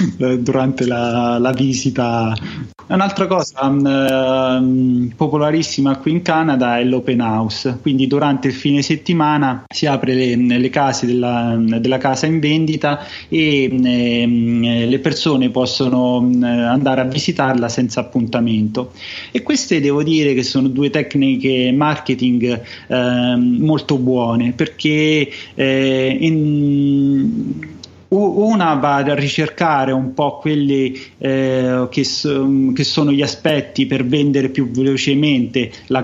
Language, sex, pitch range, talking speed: Italian, male, 125-145 Hz, 120 wpm